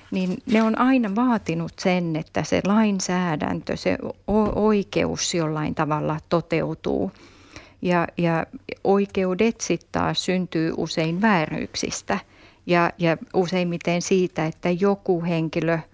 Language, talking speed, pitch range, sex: Finnish, 105 wpm, 165-195 Hz, female